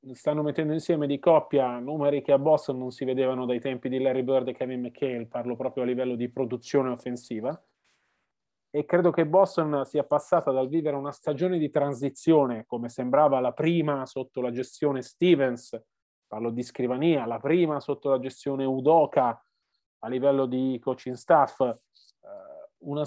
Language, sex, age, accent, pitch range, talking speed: Italian, male, 30-49, native, 135-170 Hz, 160 wpm